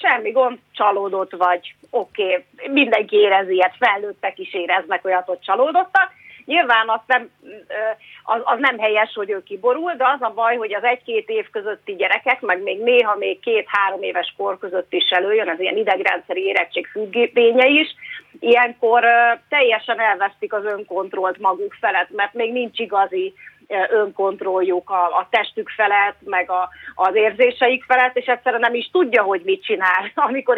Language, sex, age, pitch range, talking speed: Hungarian, female, 30-49, 195-255 Hz, 155 wpm